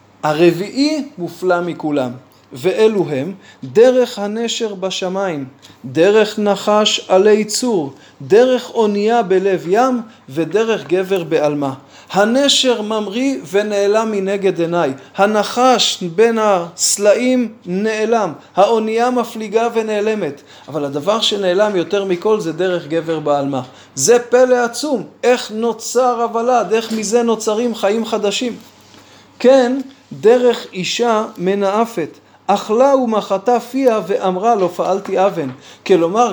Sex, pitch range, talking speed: male, 180-235 Hz, 105 wpm